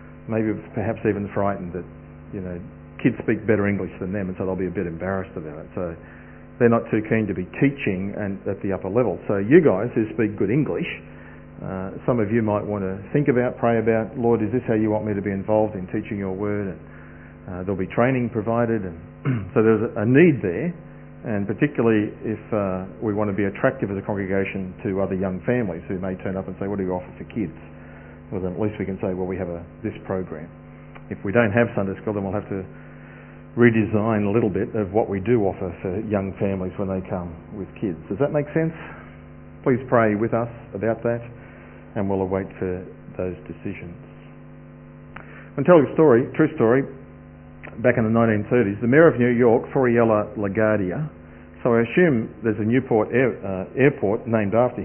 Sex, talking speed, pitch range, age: male, 205 wpm, 95-115 Hz, 40-59